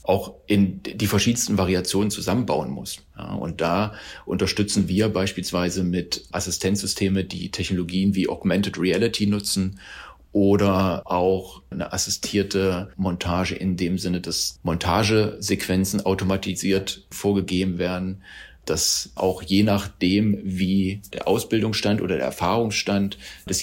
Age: 40-59